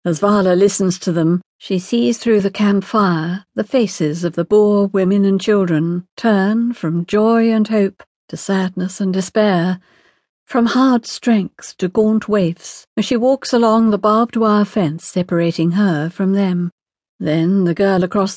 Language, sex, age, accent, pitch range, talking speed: English, female, 60-79, British, 175-215 Hz, 160 wpm